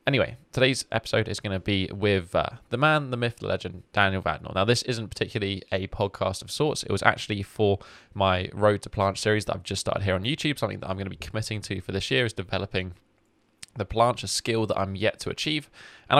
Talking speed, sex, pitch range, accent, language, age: 235 wpm, male, 95-115 Hz, British, English, 20-39